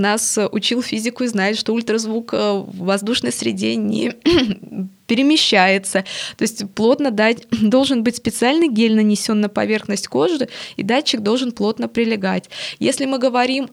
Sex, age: female, 20-39